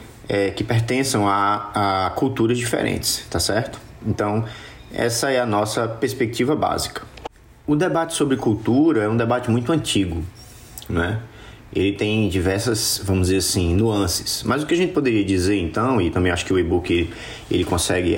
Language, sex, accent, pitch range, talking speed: English, male, Brazilian, 105-150 Hz, 165 wpm